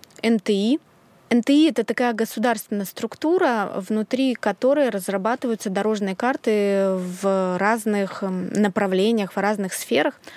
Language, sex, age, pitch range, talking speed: Russian, female, 20-39, 195-240 Hz, 100 wpm